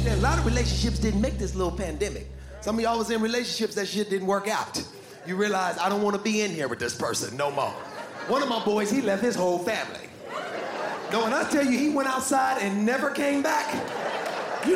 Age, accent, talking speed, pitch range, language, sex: 30-49, American, 235 wpm, 205-315 Hz, English, male